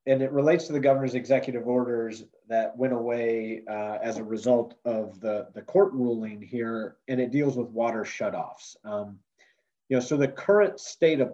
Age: 30-49